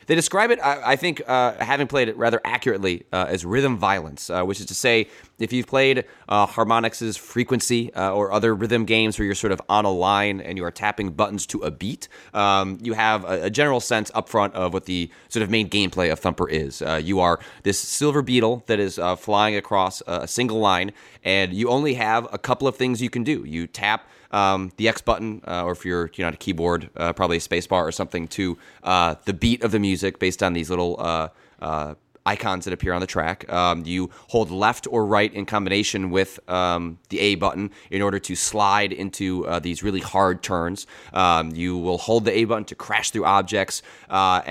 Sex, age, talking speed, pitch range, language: male, 30-49, 220 wpm, 90-115 Hz, English